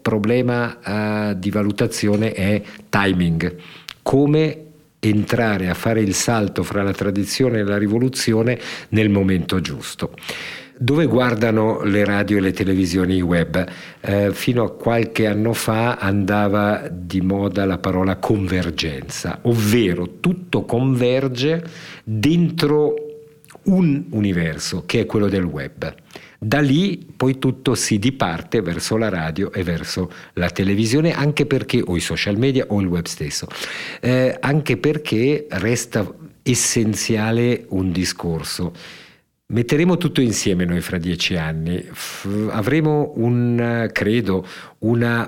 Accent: native